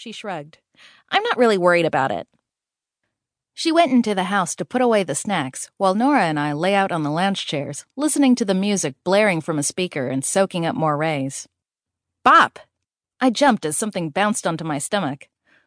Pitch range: 155-240 Hz